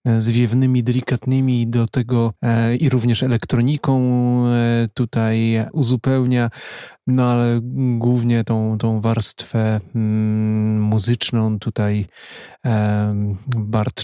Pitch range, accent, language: 110-125 Hz, native, Polish